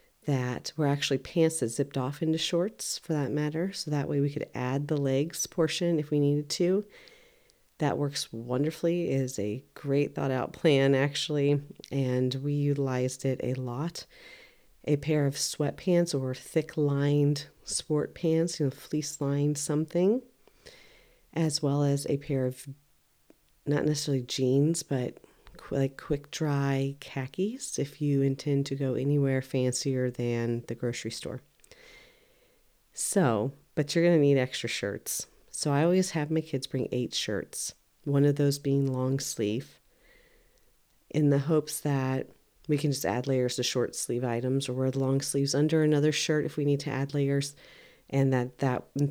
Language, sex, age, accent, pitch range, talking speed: English, female, 40-59, American, 135-160 Hz, 165 wpm